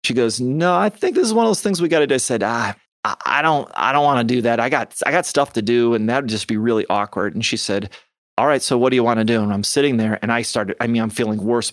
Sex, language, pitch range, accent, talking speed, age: male, English, 115-135 Hz, American, 320 wpm, 30-49